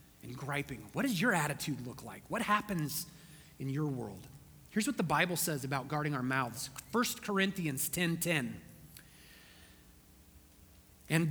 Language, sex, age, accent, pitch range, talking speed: English, male, 30-49, American, 160-230 Hz, 145 wpm